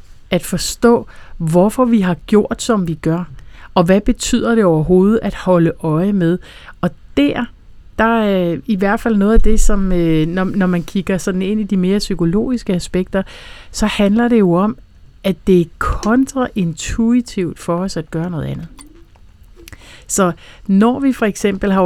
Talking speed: 165 wpm